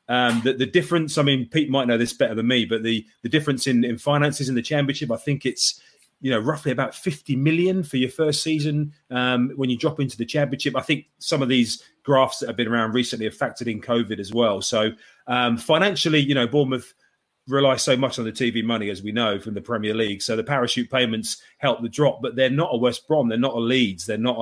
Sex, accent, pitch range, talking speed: male, British, 115-140 Hz, 245 wpm